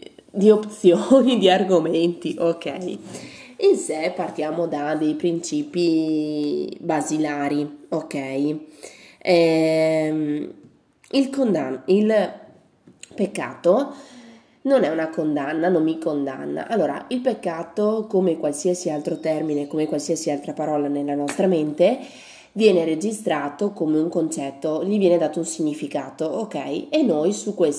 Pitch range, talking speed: 150-190 Hz, 115 wpm